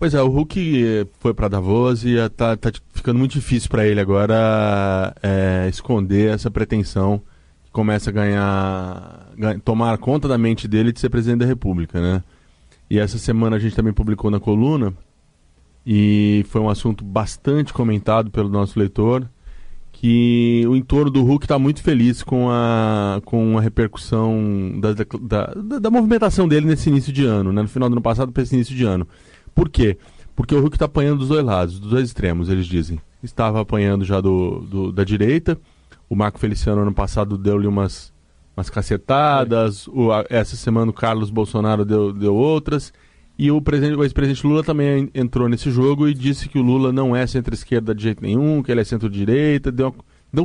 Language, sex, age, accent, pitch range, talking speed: Portuguese, male, 20-39, Brazilian, 100-125 Hz, 180 wpm